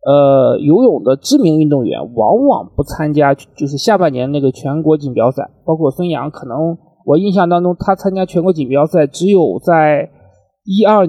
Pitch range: 150-205 Hz